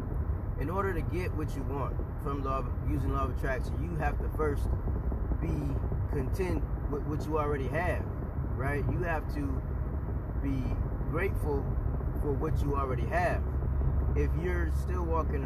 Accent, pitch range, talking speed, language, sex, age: American, 70-75 Hz, 155 wpm, English, male, 20-39